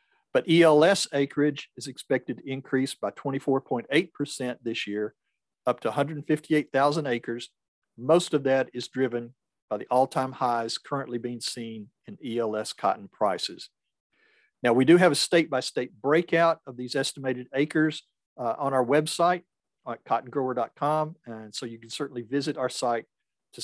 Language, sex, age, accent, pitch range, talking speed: English, male, 50-69, American, 120-150 Hz, 145 wpm